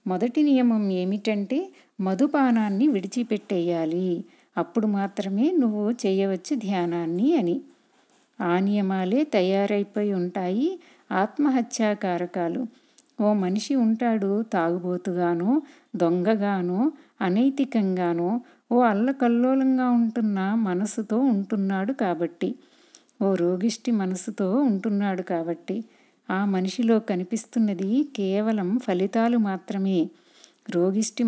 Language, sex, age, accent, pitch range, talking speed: Telugu, female, 50-69, native, 190-240 Hz, 75 wpm